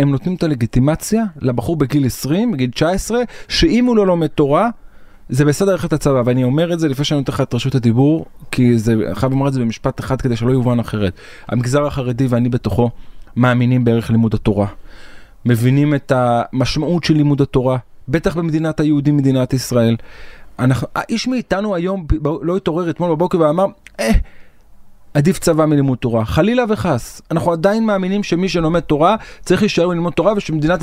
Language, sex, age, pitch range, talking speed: Hebrew, male, 30-49, 120-170 Hz, 170 wpm